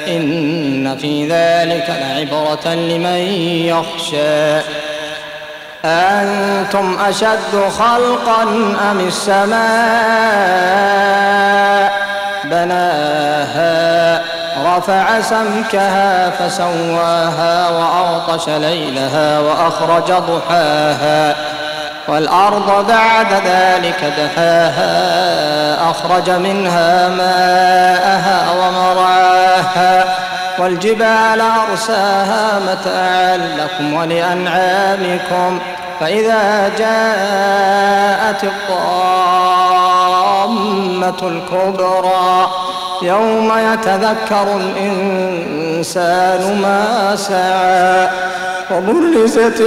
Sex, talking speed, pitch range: male, 50 wpm, 170-200 Hz